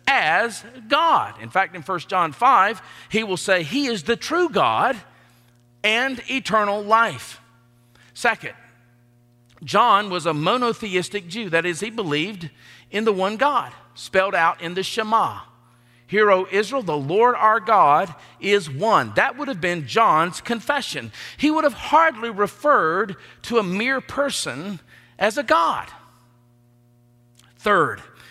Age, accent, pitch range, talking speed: 50-69, American, 135-225 Hz, 140 wpm